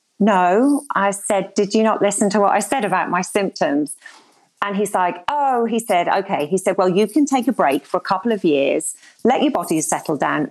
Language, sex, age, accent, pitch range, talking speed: English, female, 40-59, British, 180-235 Hz, 225 wpm